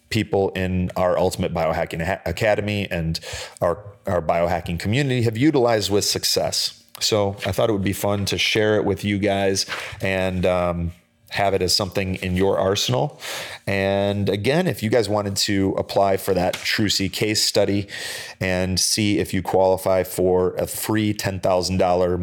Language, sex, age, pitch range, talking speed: English, male, 30-49, 95-110 Hz, 160 wpm